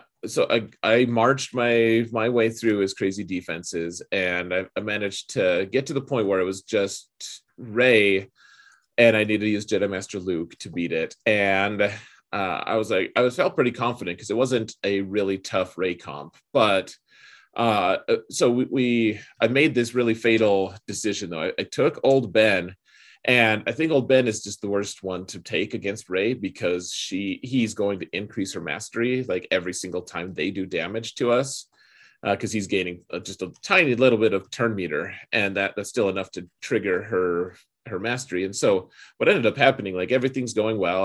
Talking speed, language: 195 wpm, English